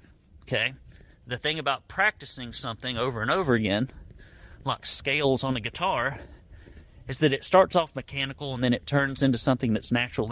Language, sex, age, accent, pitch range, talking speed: English, male, 30-49, American, 105-145 Hz, 170 wpm